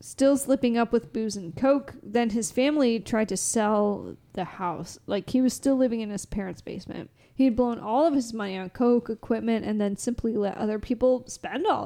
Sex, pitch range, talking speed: female, 205-250 Hz, 210 wpm